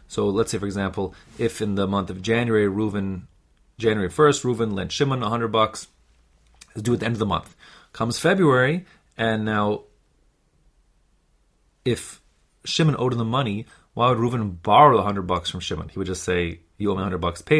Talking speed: 190 wpm